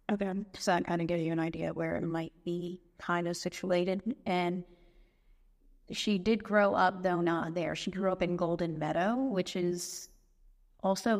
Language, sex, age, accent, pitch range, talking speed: English, female, 30-49, American, 165-190 Hz, 175 wpm